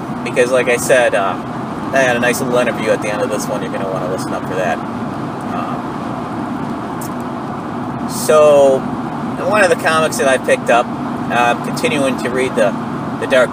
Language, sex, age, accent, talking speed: English, male, 40-59, American, 200 wpm